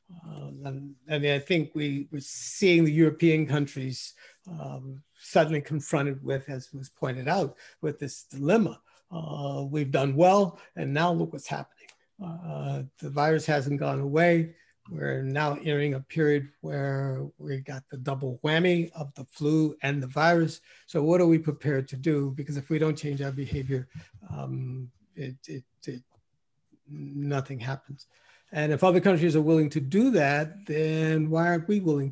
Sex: male